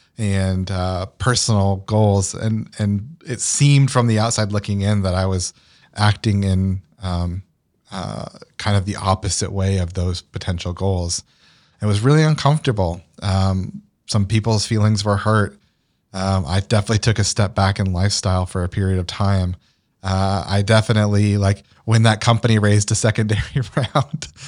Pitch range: 95-115 Hz